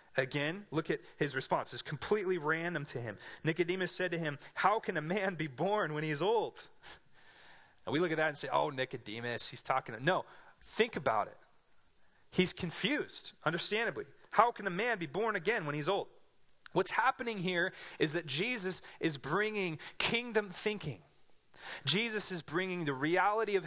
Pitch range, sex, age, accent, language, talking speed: 150-195 Hz, male, 30-49, American, English, 170 wpm